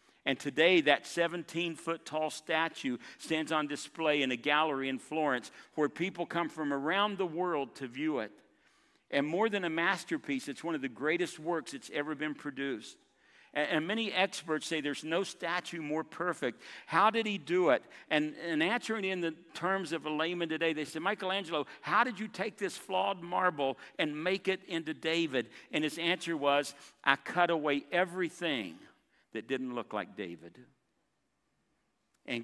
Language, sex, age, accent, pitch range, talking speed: English, male, 50-69, American, 135-170 Hz, 170 wpm